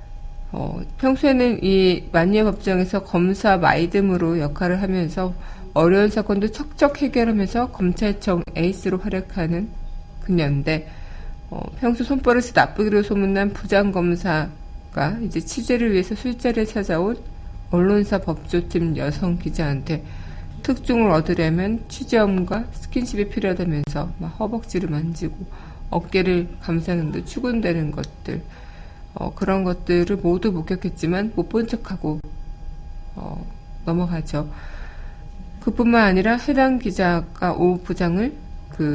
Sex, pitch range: female, 165-210 Hz